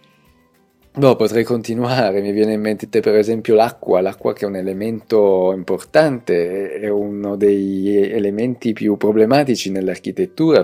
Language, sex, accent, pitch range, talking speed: Italian, male, native, 95-115 Hz, 130 wpm